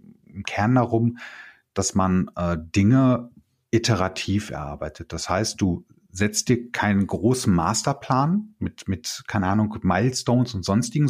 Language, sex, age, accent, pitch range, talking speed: German, male, 40-59, German, 100-130 Hz, 130 wpm